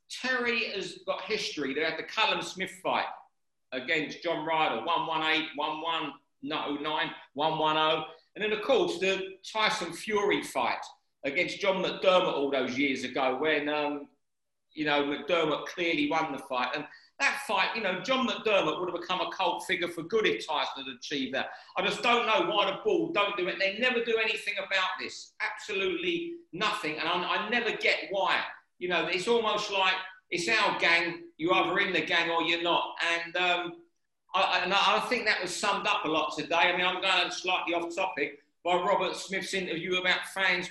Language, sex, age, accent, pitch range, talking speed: English, male, 40-59, British, 155-195 Hz, 185 wpm